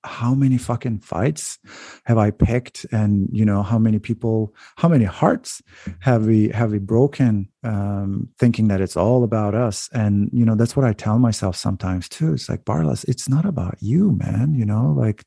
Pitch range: 100-115 Hz